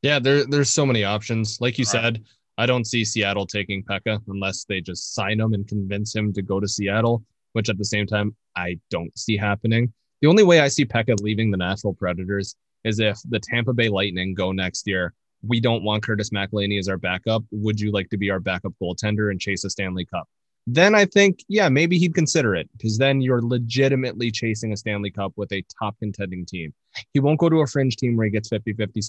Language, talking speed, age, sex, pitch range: English, 220 wpm, 20-39, male, 100-120 Hz